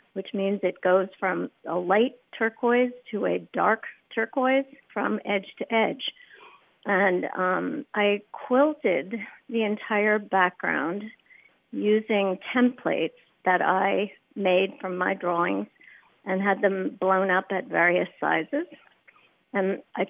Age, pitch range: 50-69, 190-230 Hz